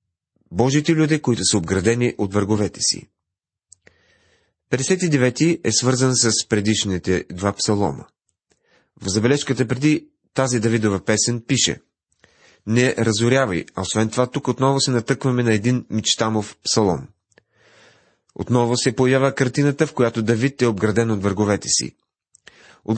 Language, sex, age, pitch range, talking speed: Bulgarian, male, 30-49, 100-135 Hz, 125 wpm